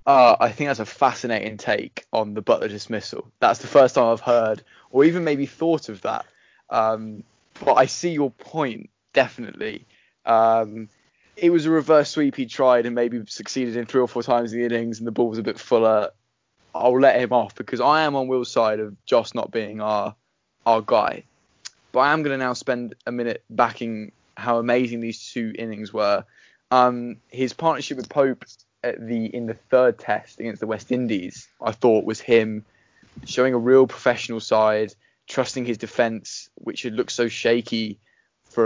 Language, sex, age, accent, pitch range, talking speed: English, male, 10-29, British, 110-130 Hz, 190 wpm